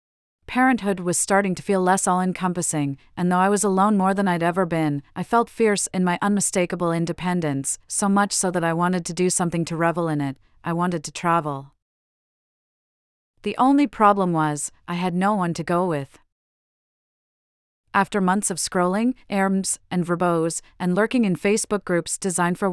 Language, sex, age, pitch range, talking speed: English, female, 30-49, 160-195 Hz, 175 wpm